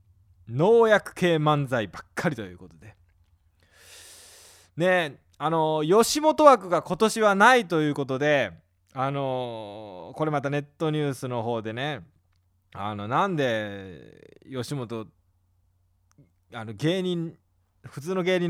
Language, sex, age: Japanese, male, 20-39